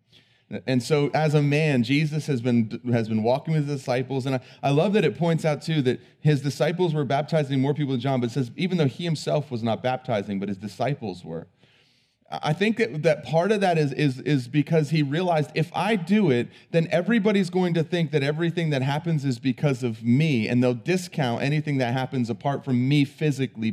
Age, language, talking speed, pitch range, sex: 30-49, English, 215 wpm, 135-190 Hz, male